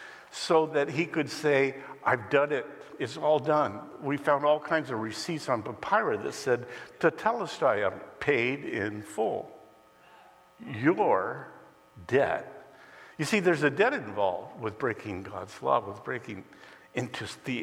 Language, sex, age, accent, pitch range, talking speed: English, male, 60-79, American, 135-200 Hz, 145 wpm